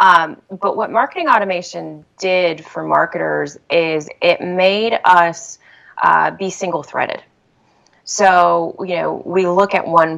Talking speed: 130 wpm